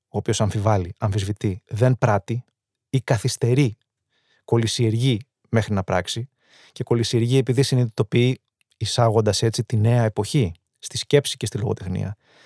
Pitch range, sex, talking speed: 115-140 Hz, male, 125 wpm